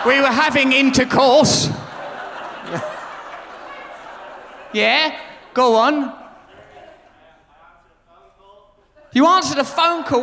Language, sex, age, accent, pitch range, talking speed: English, male, 30-49, British, 275-360 Hz, 70 wpm